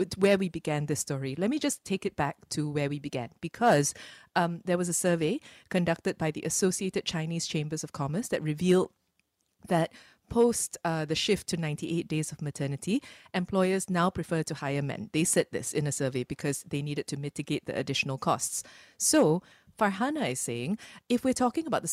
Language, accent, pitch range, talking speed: English, Malaysian, 150-200 Hz, 190 wpm